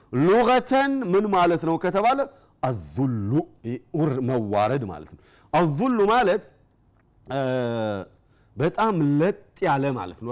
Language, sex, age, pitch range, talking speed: Amharic, male, 40-59, 130-195 Hz, 75 wpm